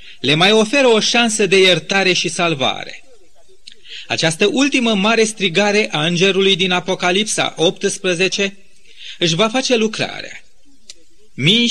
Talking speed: 120 wpm